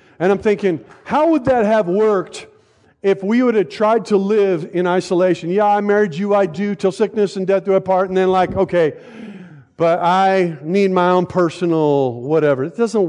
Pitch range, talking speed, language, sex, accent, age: 135-185 Hz, 195 wpm, English, male, American, 50-69